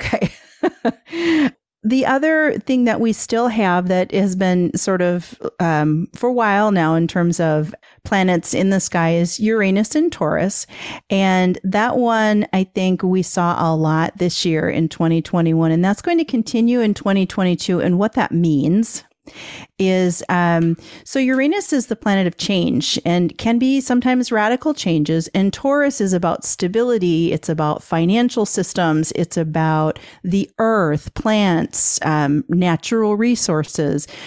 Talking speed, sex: 150 wpm, female